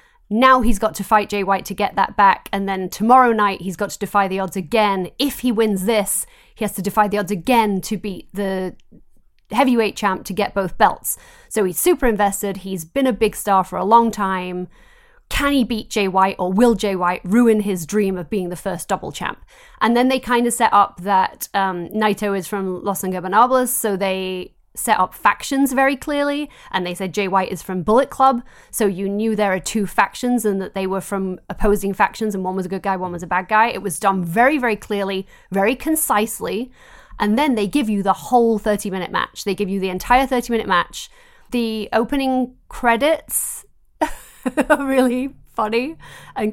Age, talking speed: 30-49, 205 wpm